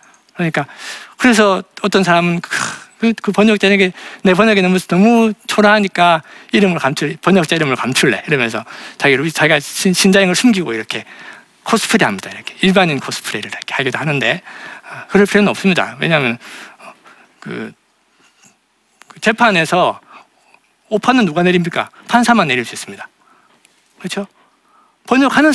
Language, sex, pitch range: Korean, male, 165-210 Hz